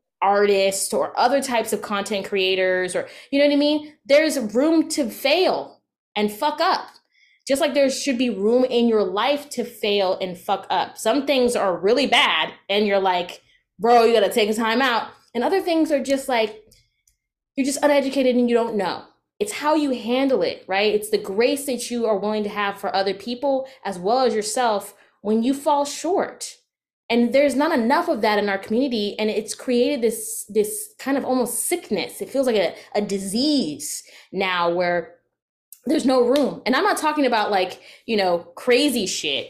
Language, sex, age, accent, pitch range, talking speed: English, female, 20-39, American, 205-280 Hz, 195 wpm